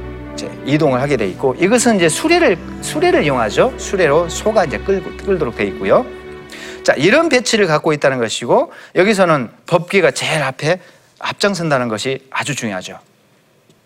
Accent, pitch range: native, 155-255 Hz